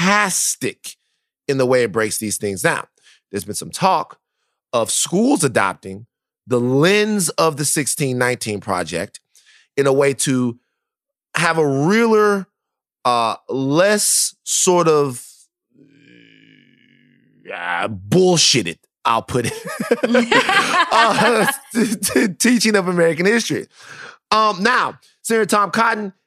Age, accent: 30-49, American